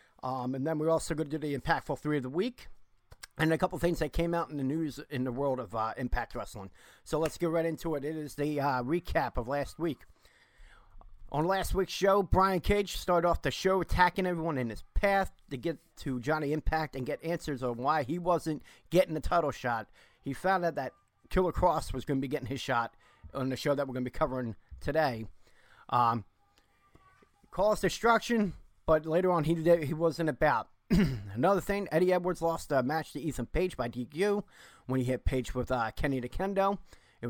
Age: 40-59